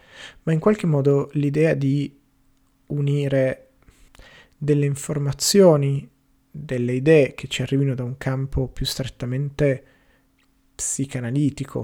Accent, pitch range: native, 135-155 Hz